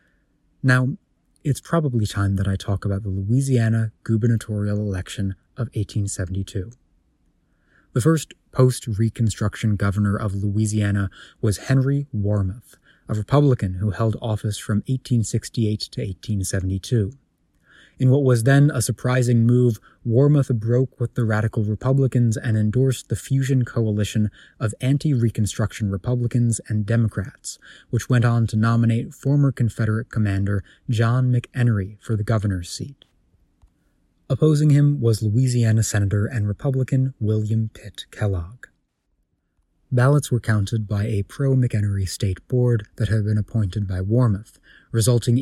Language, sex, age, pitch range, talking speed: English, male, 20-39, 105-125 Hz, 125 wpm